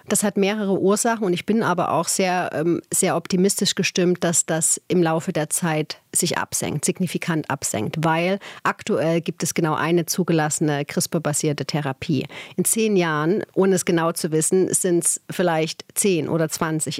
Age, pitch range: 40-59, 160-190 Hz